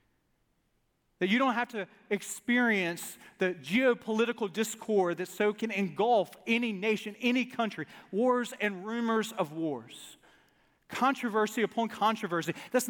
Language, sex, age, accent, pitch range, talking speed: English, male, 40-59, American, 180-245 Hz, 120 wpm